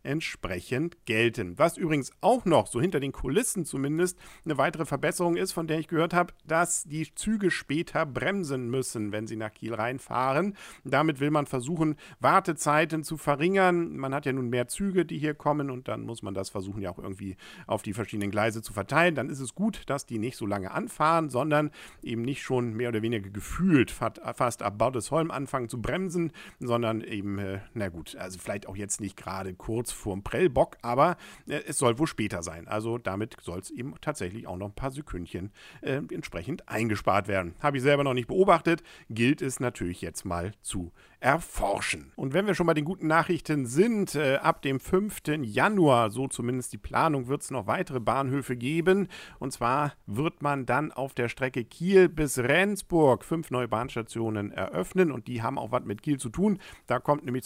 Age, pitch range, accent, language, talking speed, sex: 50-69, 105-155 Hz, German, German, 195 wpm, male